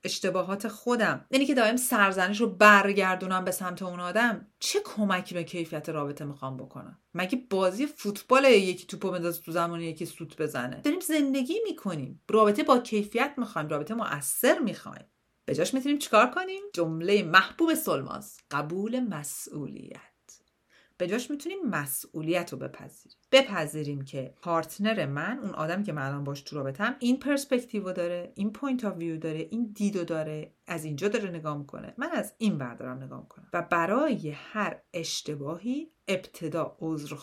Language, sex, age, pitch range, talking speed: Persian, female, 40-59, 160-235 Hz, 150 wpm